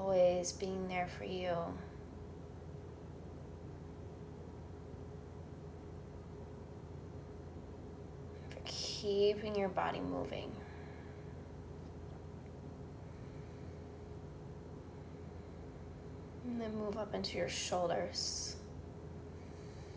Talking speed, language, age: 50 wpm, English, 20-39